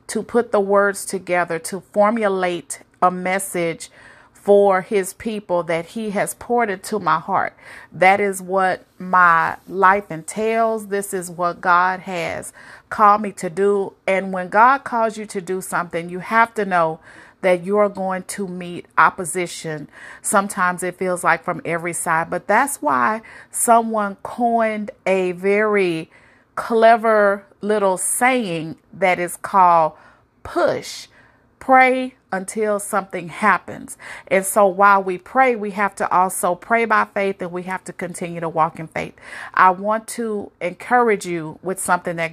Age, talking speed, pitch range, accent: 40-59, 150 wpm, 175-210 Hz, American